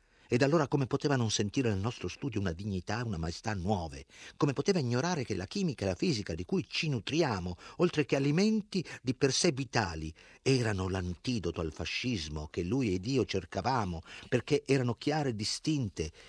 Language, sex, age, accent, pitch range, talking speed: Italian, male, 50-69, native, 85-130 Hz, 175 wpm